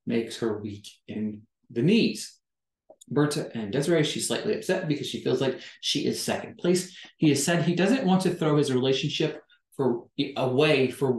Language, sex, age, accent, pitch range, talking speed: English, male, 30-49, American, 120-170 Hz, 175 wpm